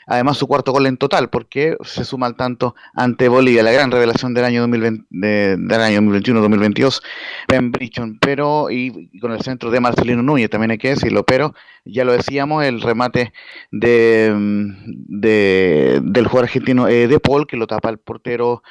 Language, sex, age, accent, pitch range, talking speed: Spanish, male, 30-49, Venezuelan, 115-145 Hz, 175 wpm